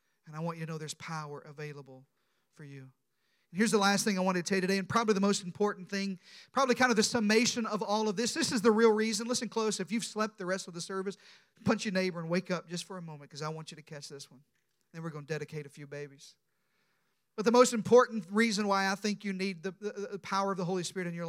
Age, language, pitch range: 40-59, English, 175-225 Hz